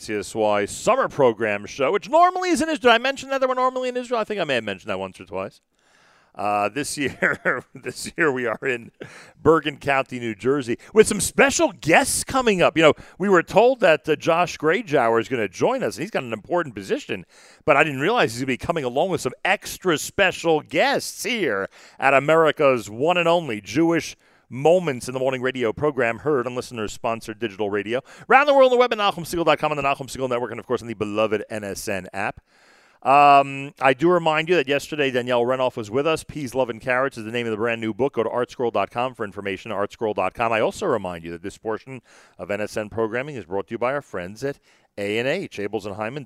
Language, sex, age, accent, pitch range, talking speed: English, male, 40-59, American, 110-160 Hz, 220 wpm